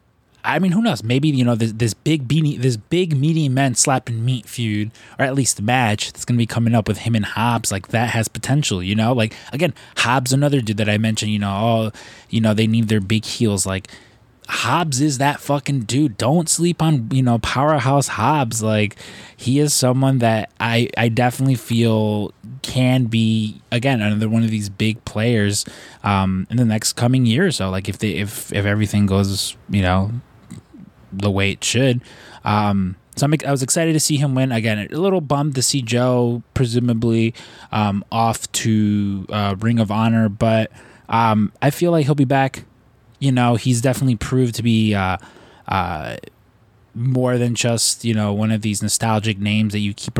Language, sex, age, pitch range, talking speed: English, male, 20-39, 105-130 Hz, 195 wpm